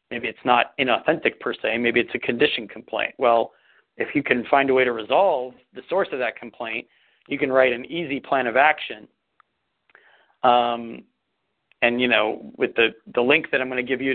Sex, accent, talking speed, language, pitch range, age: male, American, 200 wpm, English, 120-140 Hz, 40-59